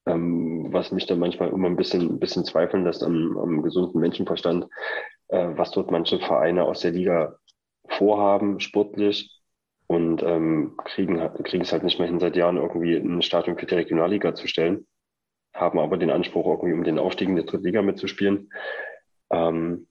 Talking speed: 175 wpm